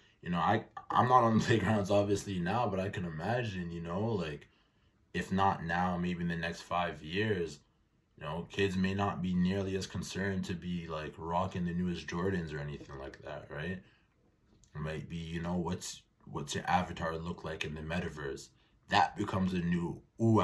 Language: English